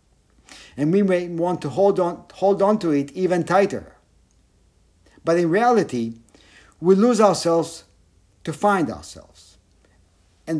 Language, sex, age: English, male, 60-79